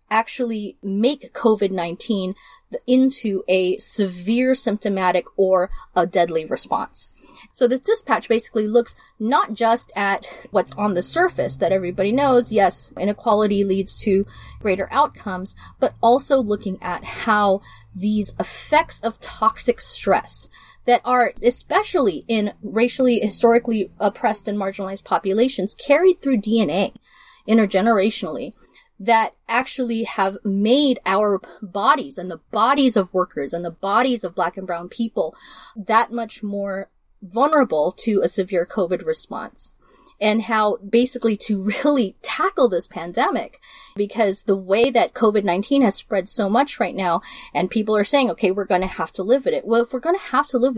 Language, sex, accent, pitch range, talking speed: English, female, American, 195-245 Hz, 145 wpm